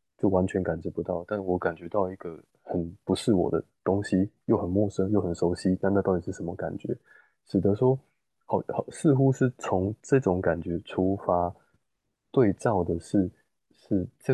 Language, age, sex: Chinese, 20-39, male